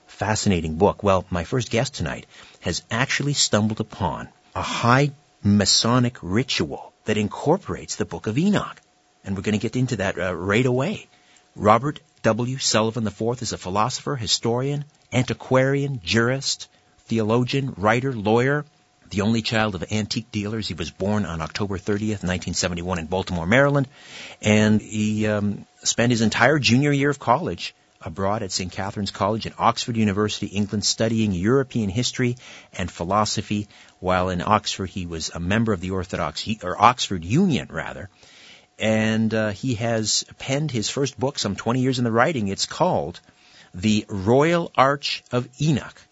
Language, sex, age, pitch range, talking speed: English, male, 50-69, 100-130 Hz, 155 wpm